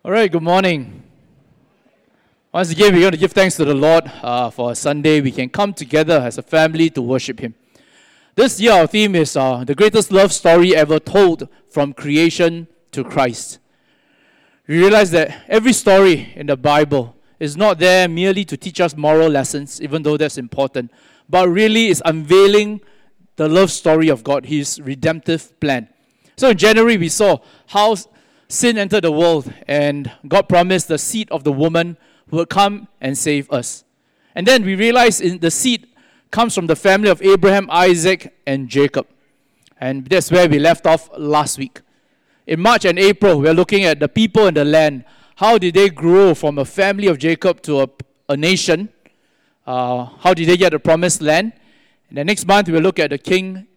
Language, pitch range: English, 150-200 Hz